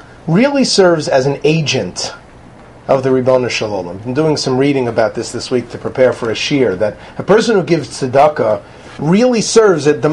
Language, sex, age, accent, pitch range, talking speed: English, male, 40-59, American, 130-185 Hz, 190 wpm